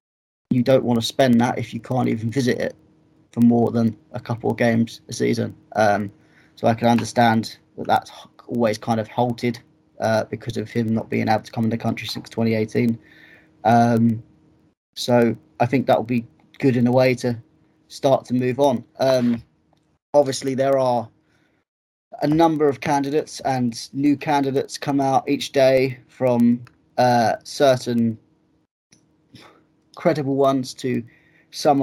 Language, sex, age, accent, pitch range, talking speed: English, male, 20-39, British, 115-130 Hz, 160 wpm